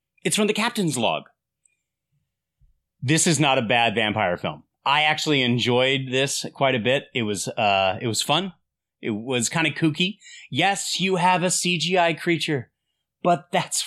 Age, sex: 30-49, male